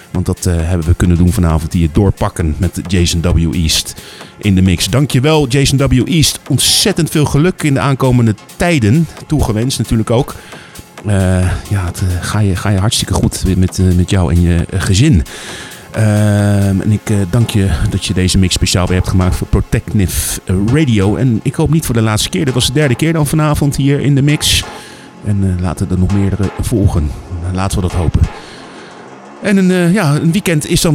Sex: male